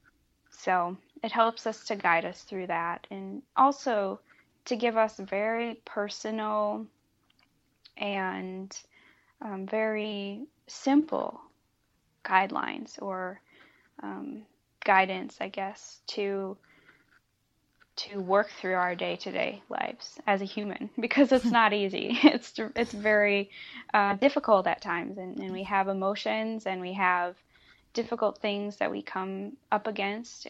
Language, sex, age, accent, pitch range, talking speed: English, female, 10-29, American, 185-220 Hz, 120 wpm